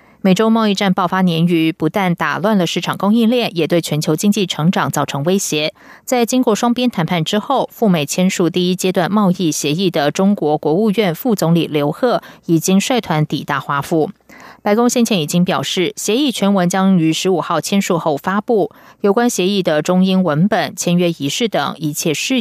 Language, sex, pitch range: German, female, 160-220 Hz